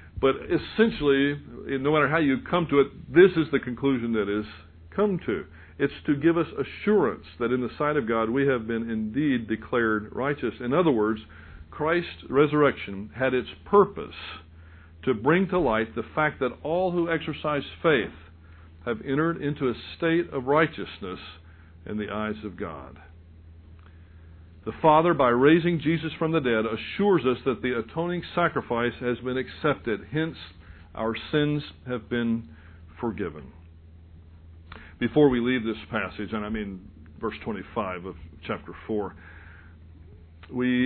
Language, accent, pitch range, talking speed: English, American, 85-140 Hz, 150 wpm